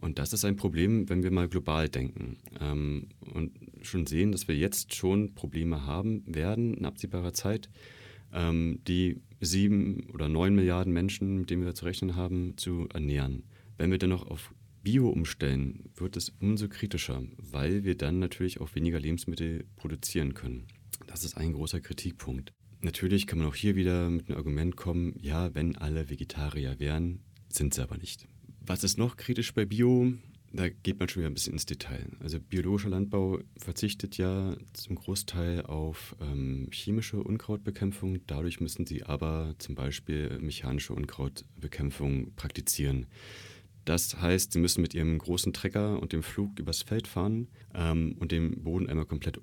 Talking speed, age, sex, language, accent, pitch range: 165 wpm, 30-49, male, English, German, 80-100 Hz